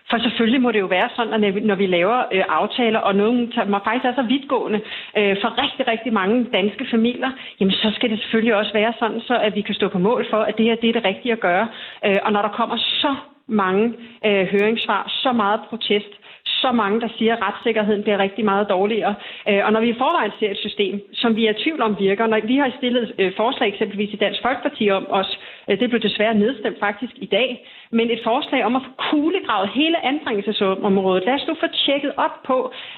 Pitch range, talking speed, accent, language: 205-245 Hz, 225 wpm, native, Danish